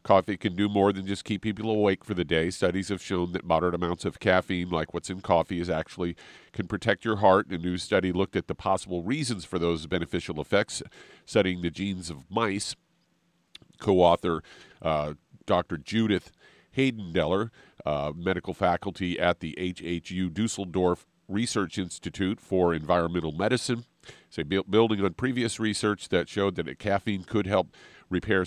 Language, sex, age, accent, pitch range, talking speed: English, male, 50-69, American, 85-100 Hz, 160 wpm